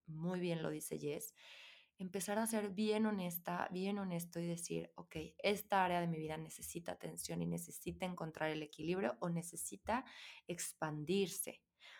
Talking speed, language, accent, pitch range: 150 wpm, Spanish, Mexican, 170-215 Hz